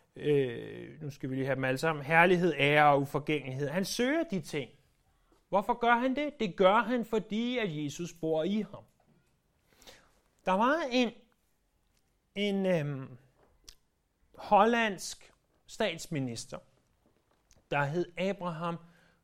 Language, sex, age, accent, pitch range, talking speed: Danish, male, 30-49, native, 150-225 Hz, 125 wpm